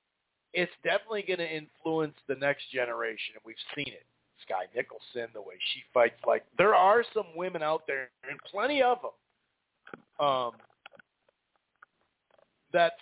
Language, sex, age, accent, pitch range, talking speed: English, male, 50-69, American, 135-175 Hz, 145 wpm